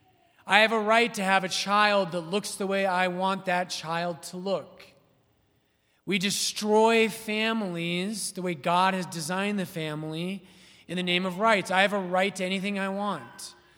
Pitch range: 150-195 Hz